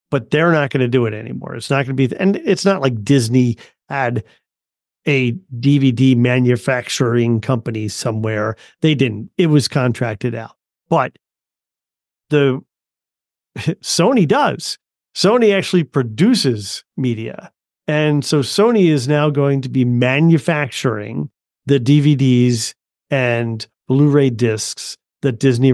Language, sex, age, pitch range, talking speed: English, male, 40-59, 125-160 Hz, 125 wpm